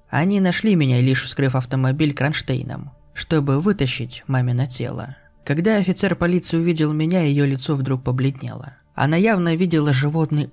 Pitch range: 130-165 Hz